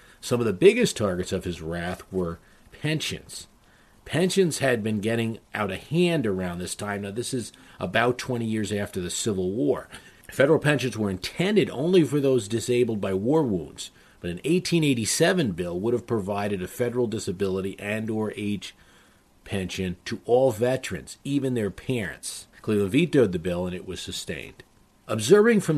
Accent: American